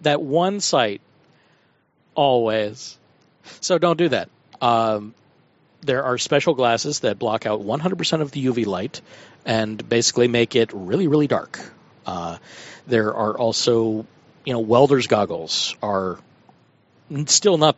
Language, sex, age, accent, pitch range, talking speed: English, male, 50-69, American, 115-155 Hz, 130 wpm